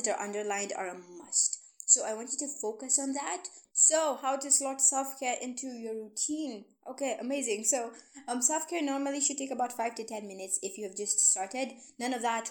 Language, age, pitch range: English, 20-39, 195-260 Hz